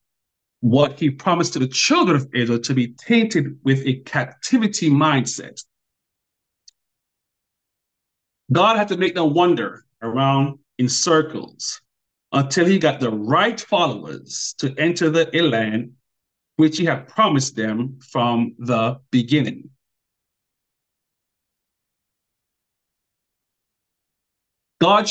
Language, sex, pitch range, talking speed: English, male, 130-175 Hz, 105 wpm